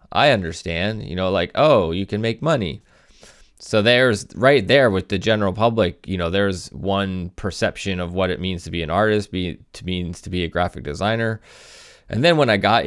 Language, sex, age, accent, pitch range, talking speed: English, male, 20-39, American, 90-110 Hz, 205 wpm